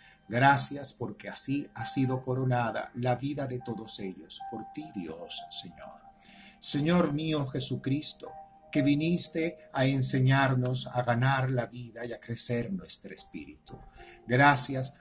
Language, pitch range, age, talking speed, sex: Spanish, 120-145 Hz, 50-69, 130 wpm, male